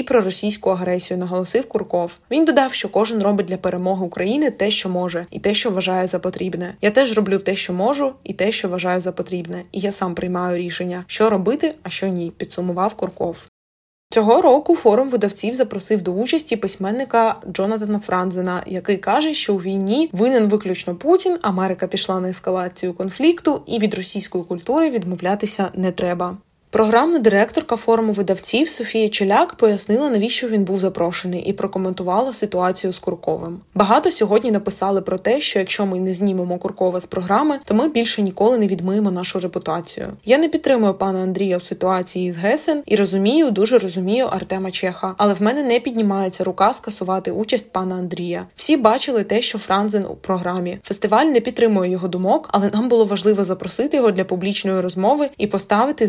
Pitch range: 185-225 Hz